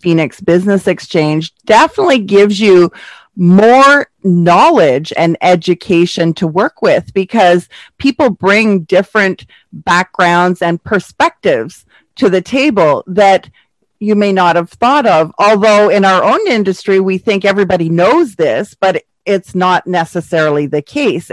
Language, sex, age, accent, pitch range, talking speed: English, female, 40-59, American, 170-205 Hz, 130 wpm